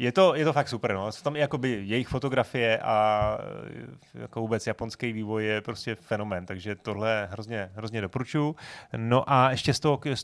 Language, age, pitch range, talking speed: Czech, 30-49, 110-125 Hz, 175 wpm